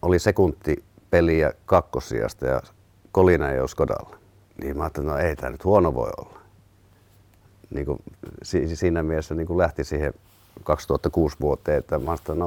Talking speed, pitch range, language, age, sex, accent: 150 wpm, 80-100 Hz, Finnish, 50-69, male, native